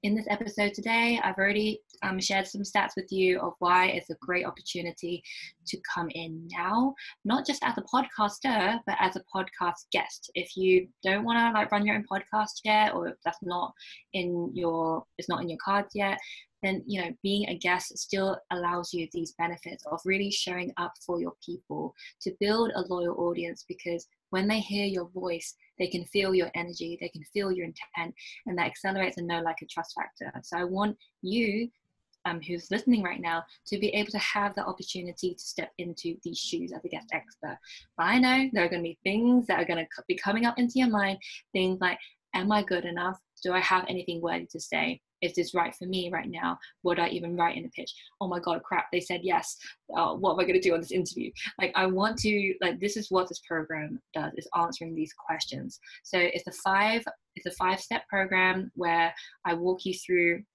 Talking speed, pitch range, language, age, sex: 215 wpm, 175-205 Hz, English, 20-39, female